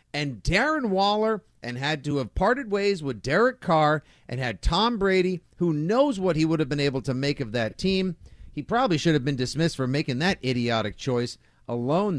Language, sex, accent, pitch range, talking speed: English, male, American, 120-175 Hz, 200 wpm